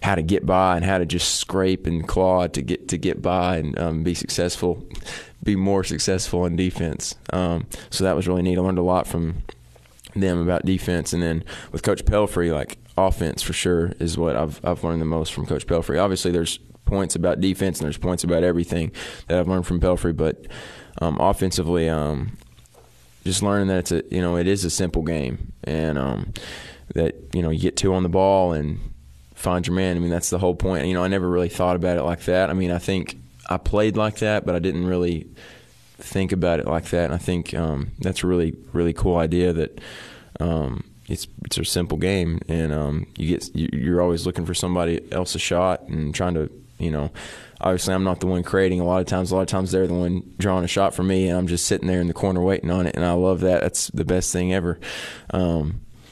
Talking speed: 230 wpm